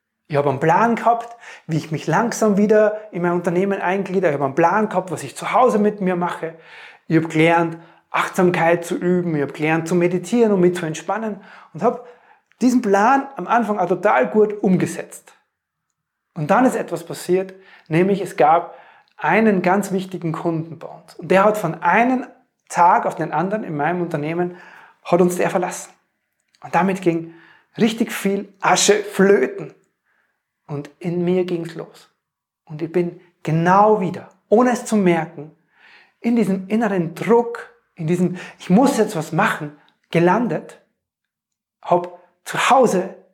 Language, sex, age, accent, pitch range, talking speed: German, male, 30-49, German, 165-210 Hz, 165 wpm